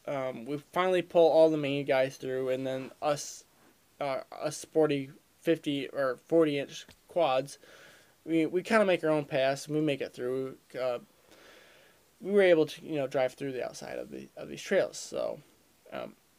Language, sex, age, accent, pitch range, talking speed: English, male, 20-39, American, 140-170 Hz, 185 wpm